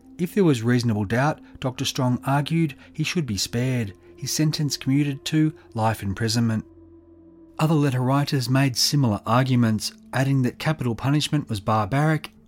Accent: Australian